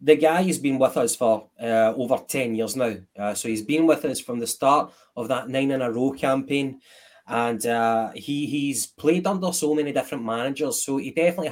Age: 20-39